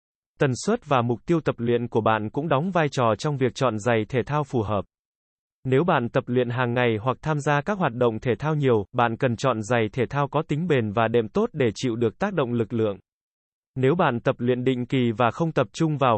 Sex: male